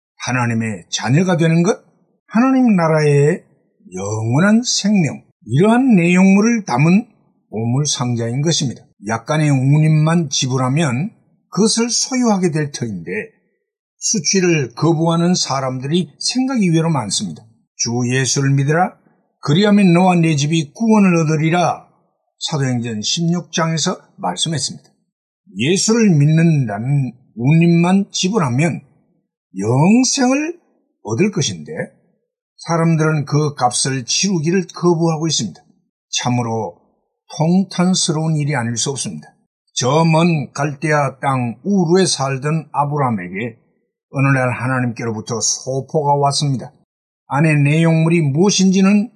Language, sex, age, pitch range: Korean, male, 60-79, 140-190 Hz